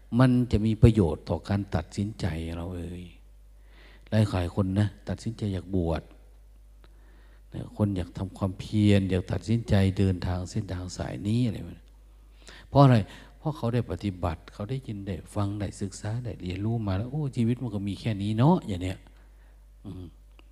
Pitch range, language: 90-115 Hz, Thai